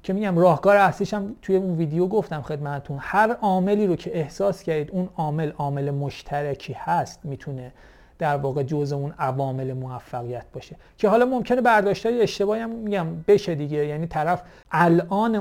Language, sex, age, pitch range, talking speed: Greek, male, 40-59, 150-195 Hz, 160 wpm